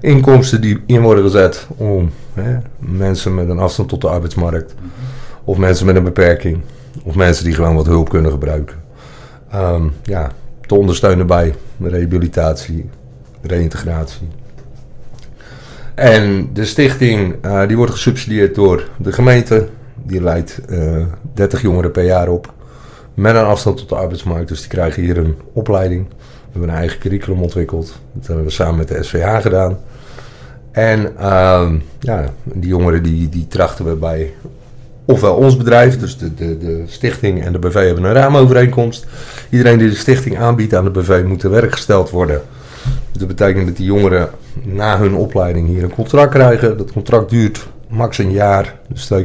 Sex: male